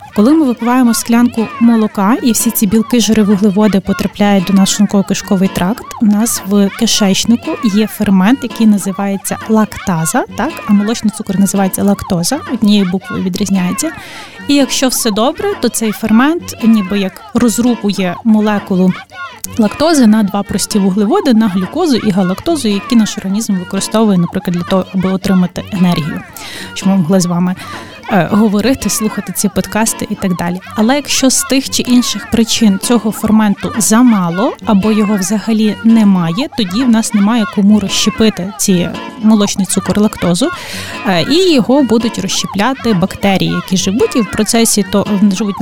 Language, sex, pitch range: Ukrainian, female, 200-235 Hz